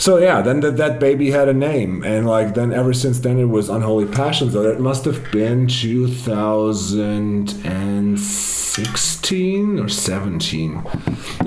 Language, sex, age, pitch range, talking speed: English, male, 30-49, 95-120 Hz, 145 wpm